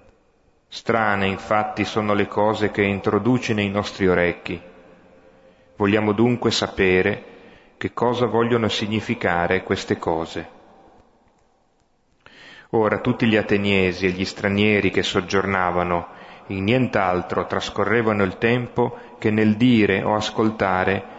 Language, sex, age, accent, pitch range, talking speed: Italian, male, 30-49, native, 95-115 Hz, 110 wpm